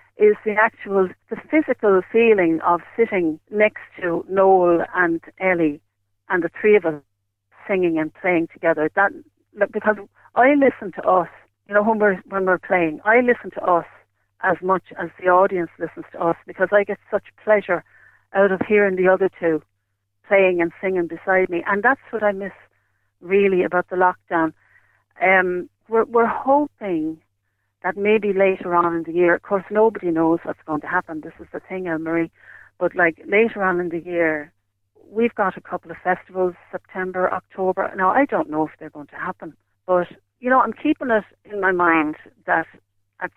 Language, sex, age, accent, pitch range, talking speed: English, female, 60-79, Irish, 165-200 Hz, 180 wpm